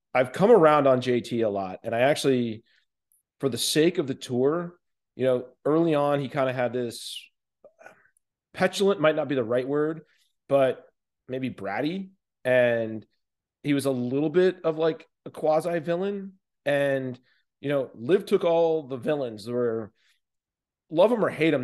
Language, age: English, 40-59